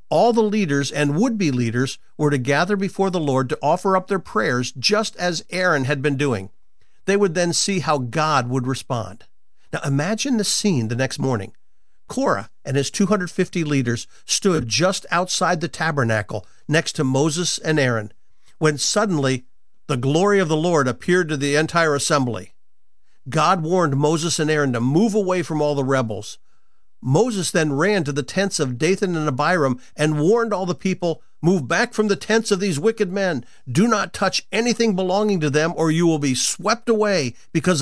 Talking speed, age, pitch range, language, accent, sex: 180 wpm, 50-69, 140-190 Hz, English, American, male